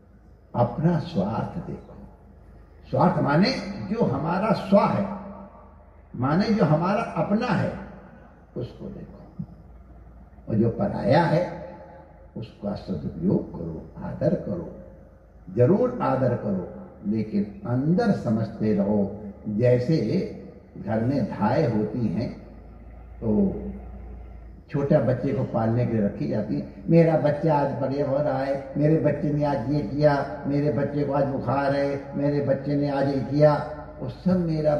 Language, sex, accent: Hindi, male, native